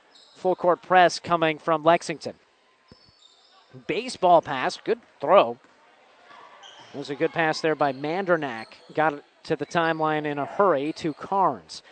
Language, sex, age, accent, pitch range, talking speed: English, male, 40-59, American, 155-190 Hz, 140 wpm